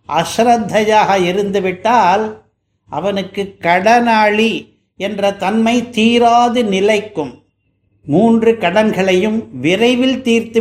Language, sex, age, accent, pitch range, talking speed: Tamil, male, 60-79, native, 190-235 Hz, 70 wpm